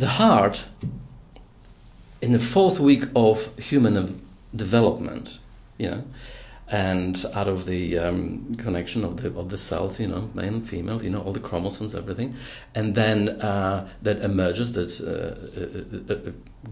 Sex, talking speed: male, 145 wpm